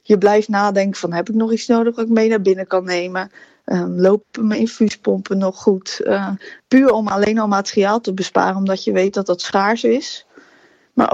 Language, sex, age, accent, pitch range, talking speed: Dutch, female, 20-39, Dutch, 190-225 Hz, 205 wpm